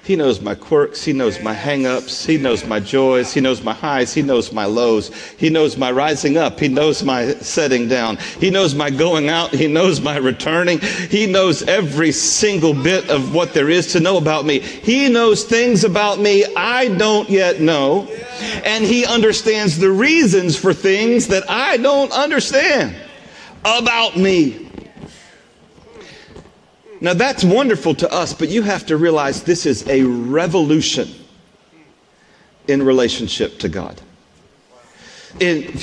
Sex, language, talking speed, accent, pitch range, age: male, English, 155 wpm, American, 145-210 Hz, 50-69